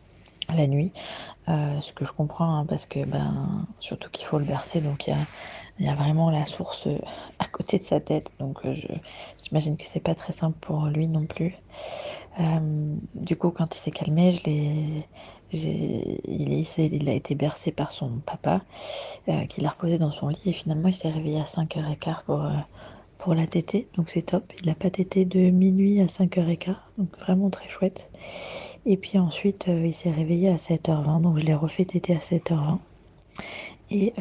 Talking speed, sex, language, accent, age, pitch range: 195 wpm, female, French, French, 20-39, 150-175 Hz